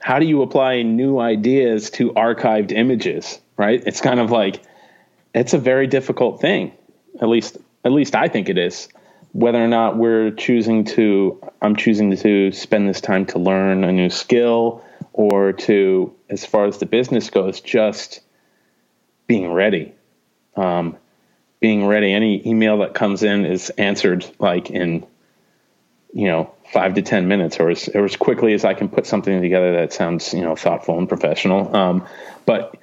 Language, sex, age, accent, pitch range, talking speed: English, male, 30-49, American, 95-115 Hz, 170 wpm